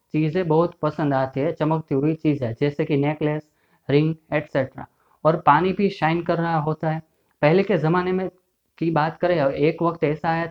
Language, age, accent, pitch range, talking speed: Hindi, 30-49, native, 150-175 Hz, 185 wpm